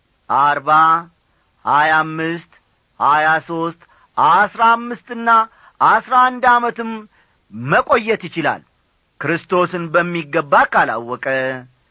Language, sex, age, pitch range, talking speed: Amharic, male, 40-59, 155-230 Hz, 65 wpm